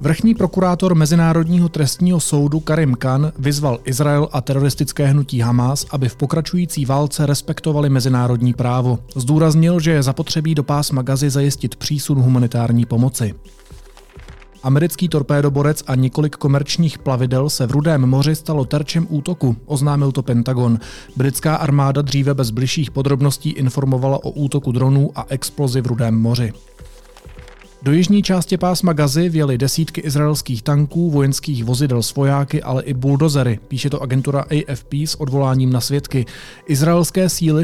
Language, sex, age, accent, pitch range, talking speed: Czech, male, 30-49, native, 130-155 Hz, 135 wpm